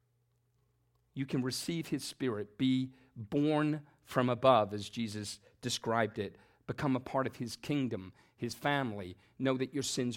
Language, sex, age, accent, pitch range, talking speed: English, male, 40-59, American, 125-180 Hz, 150 wpm